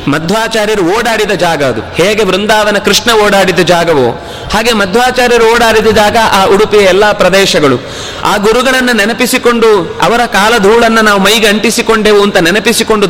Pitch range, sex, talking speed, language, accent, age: 175-220 Hz, male, 125 wpm, Kannada, native, 30-49